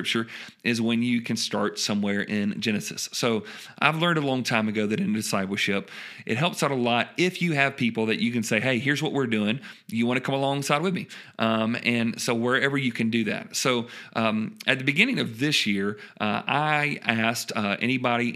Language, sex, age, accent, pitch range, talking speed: English, male, 40-59, American, 110-130 Hz, 210 wpm